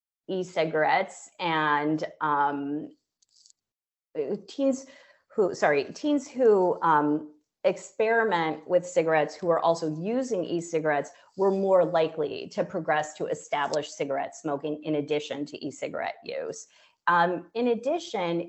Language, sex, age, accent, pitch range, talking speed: English, female, 30-49, American, 155-195 Hz, 110 wpm